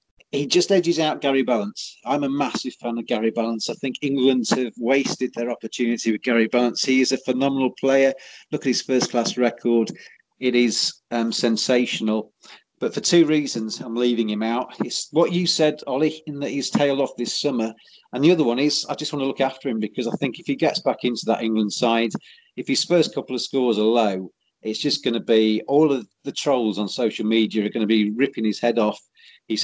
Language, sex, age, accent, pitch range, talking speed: English, male, 40-59, British, 115-150 Hz, 220 wpm